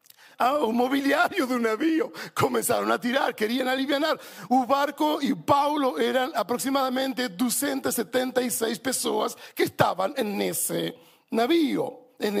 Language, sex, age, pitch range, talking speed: Portuguese, male, 50-69, 240-295 Hz, 120 wpm